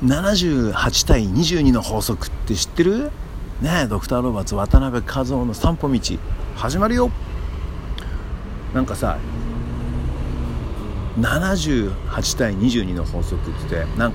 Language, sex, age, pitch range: Japanese, male, 50-69, 80-115 Hz